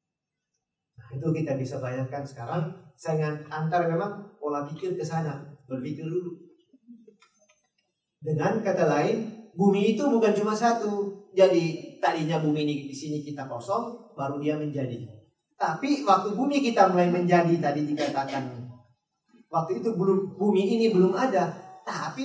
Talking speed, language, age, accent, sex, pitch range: 135 wpm, English, 40-59, Indonesian, male, 140-190 Hz